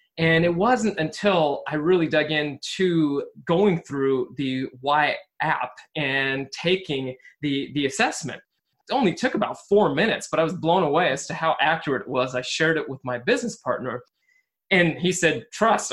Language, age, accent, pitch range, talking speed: English, 20-39, American, 135-170 Hz, 175 wpm